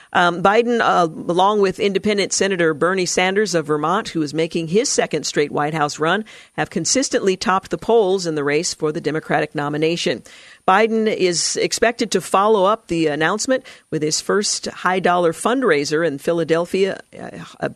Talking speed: 165 wpm